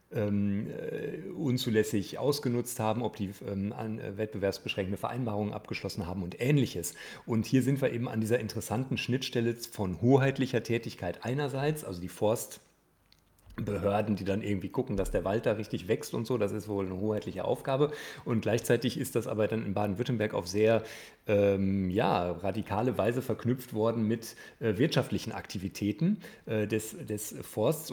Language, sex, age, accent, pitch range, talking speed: German, male, 40-59, German, 105-125 Hz, 155 wpm